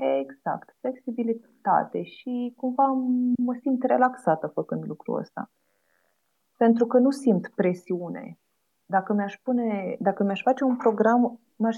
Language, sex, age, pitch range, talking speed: Romanian, female, 30-49, 195-250 Hz, 120 wpm